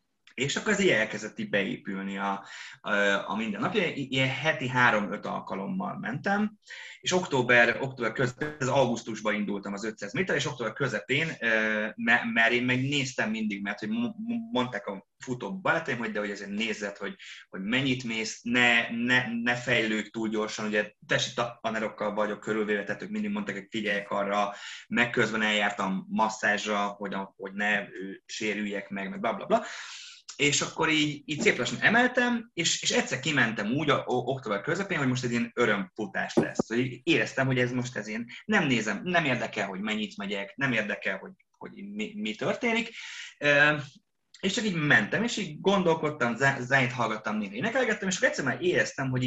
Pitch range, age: 105-160 Hz, 20-39